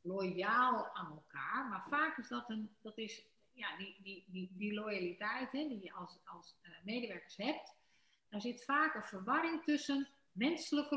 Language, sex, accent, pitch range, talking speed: Dutch, female, Dutch, 195-275 Hz, 170 wpm